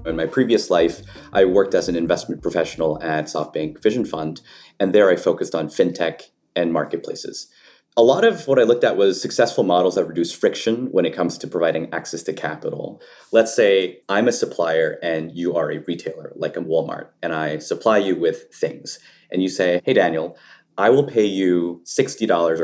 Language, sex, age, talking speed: English, male, 30-49, 190 wpm